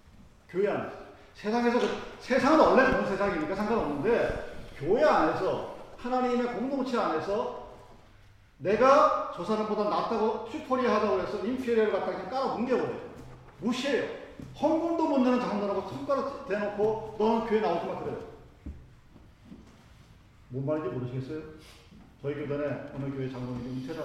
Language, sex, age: Korean, male, 40-59